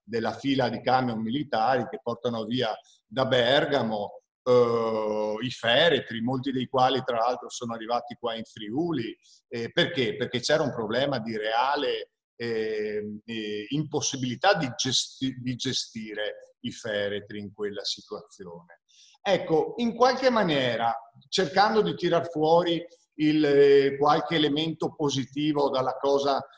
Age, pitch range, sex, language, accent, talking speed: 50-69, 130-170 Hz, male, Italian, native, 130 wpm